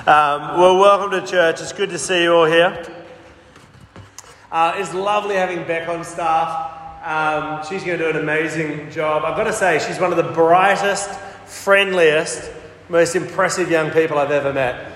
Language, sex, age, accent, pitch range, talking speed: English, male, 30-49, Australian, 160-195 Hz, 175 wpm